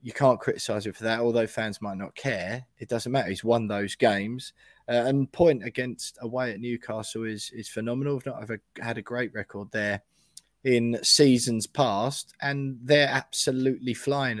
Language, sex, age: English, male, 20-39